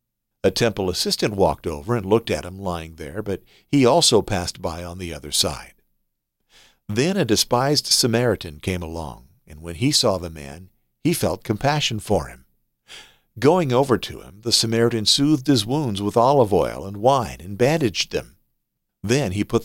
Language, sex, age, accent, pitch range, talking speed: English, male, 50-69, American, 90-120 Hz, 175 wpm